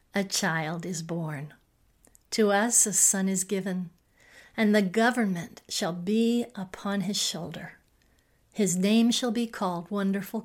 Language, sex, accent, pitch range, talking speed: English, female, American, 200-230 Hz, 140 wpm